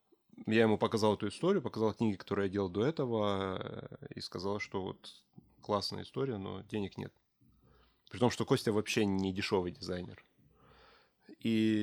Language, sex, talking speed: Russian, male, 150 wpm